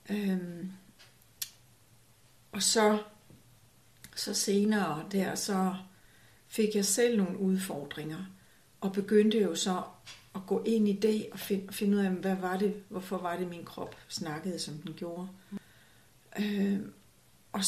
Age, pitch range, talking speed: 60-79, 160-200 Hz, 135 wpm